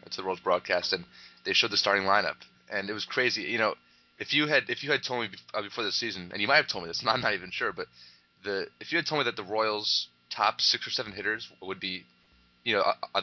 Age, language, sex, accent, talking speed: 20-39, English, male, American, 270 wpm